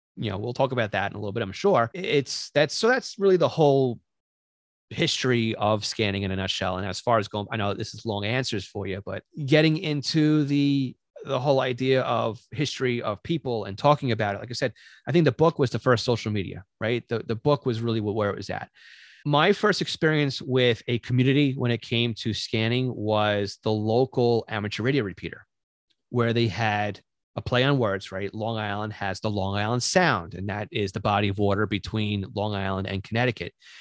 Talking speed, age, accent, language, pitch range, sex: 210 wpm, 30-49, American, English, 105-130 Hz, male